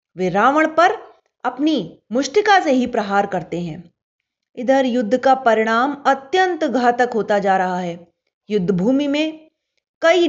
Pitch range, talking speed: 205-310 Hz, 140 wpm